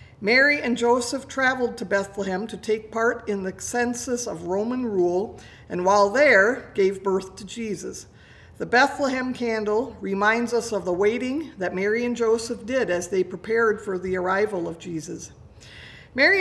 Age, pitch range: 50-69, 185-240 Hz